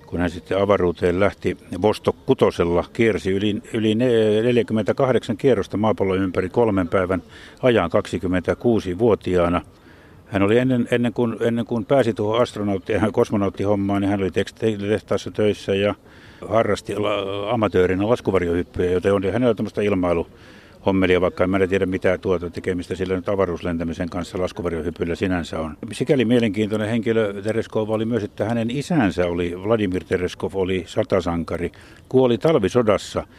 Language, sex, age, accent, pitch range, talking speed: Finnish, male, 60-79, native, 90-110 Hz, 135 wpm